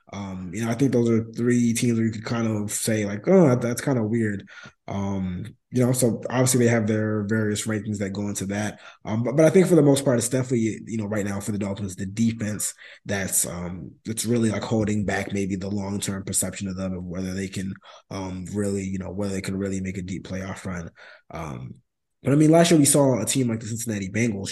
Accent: American